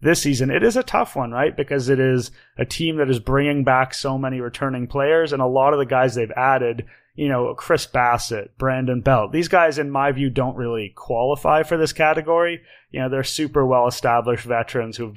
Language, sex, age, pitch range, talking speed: English, male, 30-49, 120-140 Hz, 215 wpm